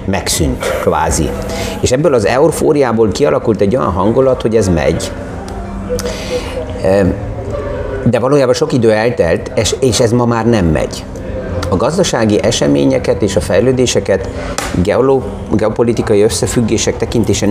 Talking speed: 115 wpm